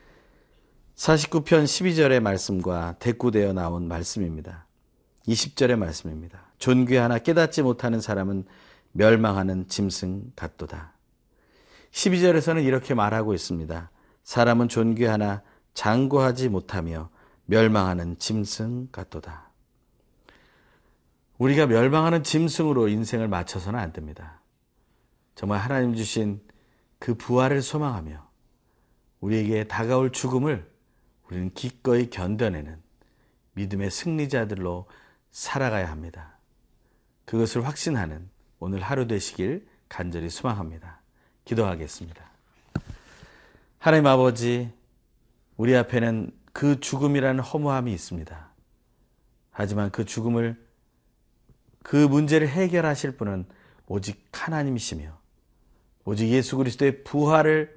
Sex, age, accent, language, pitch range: male, 40-59, native, Korean, 90-130 Hz